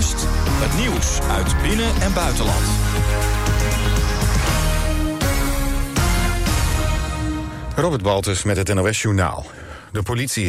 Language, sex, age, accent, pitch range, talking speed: Dutch, male, 50-69, Dutch, 85-105 Hz, 80 wpm